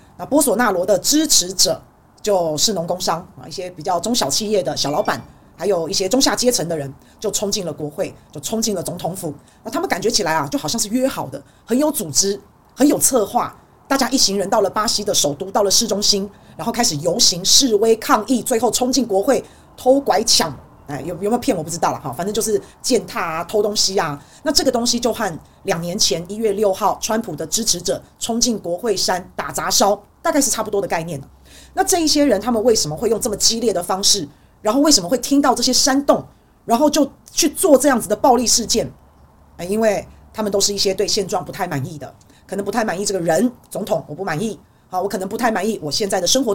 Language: Chinese